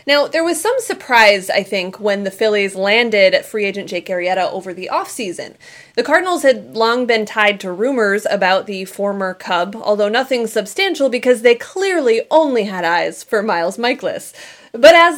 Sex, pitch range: female, 200-310 Hz